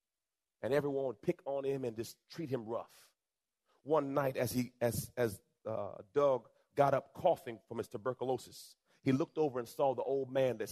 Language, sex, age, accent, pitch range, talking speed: English, male, 30-49, American, 125-170 Hz, 190 wpm